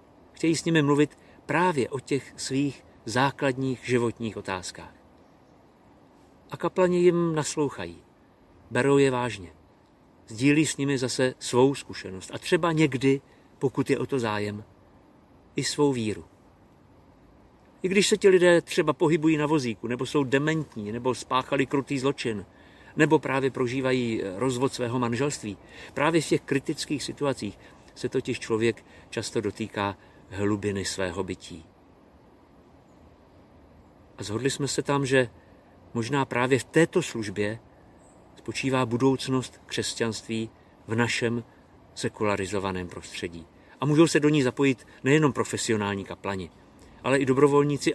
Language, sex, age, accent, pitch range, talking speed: Czech, male, 50-69, native, 95-140 Hz, 125 wpm